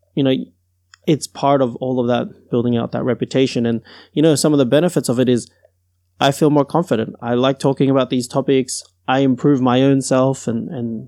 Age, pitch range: 20-39, 120-145 Hz